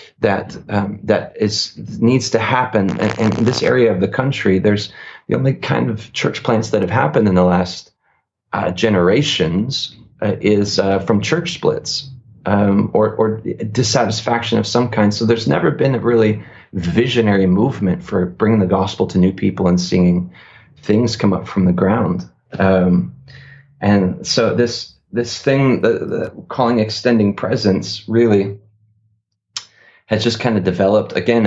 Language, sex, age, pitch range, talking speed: English, male, 30-49, 95-115 Hz, 160 wpm